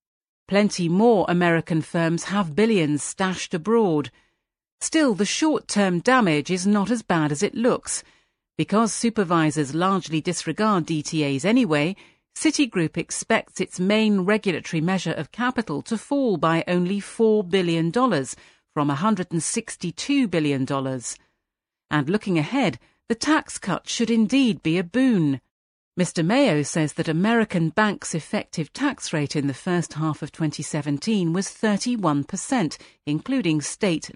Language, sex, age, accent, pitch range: Chinese, female, 40-59, British, 160-220 Hz